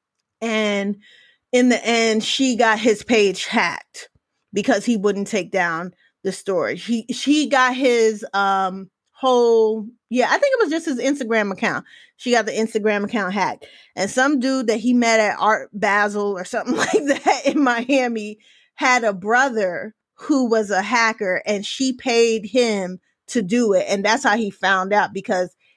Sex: female